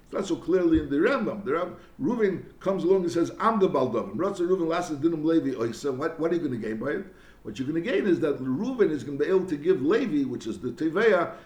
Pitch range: 155-200 Hz